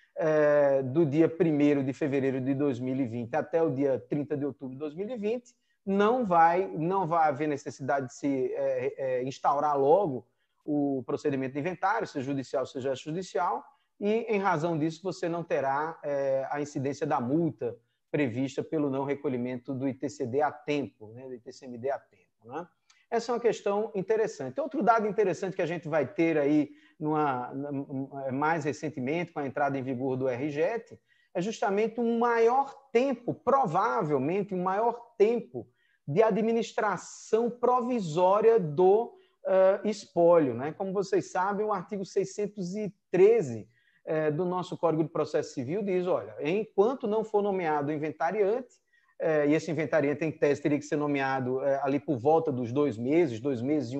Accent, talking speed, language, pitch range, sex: Brazilian, 155 wpm, Portuguese, 145-210 Hz, male